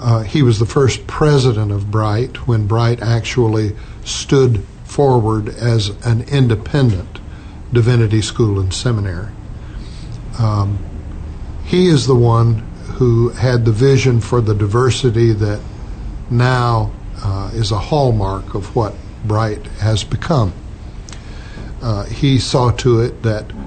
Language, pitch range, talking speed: English, 105-125 Hz, 125 wpm